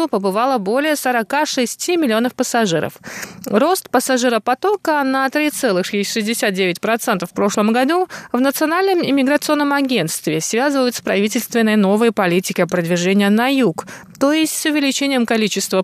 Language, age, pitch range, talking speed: Russian, 20-39, 200-280 Hz, 110 wpm